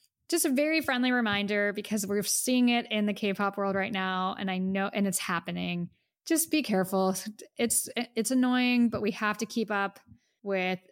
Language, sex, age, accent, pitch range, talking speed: English, female, 10-29, American, 185-225 Hz, 185 wpm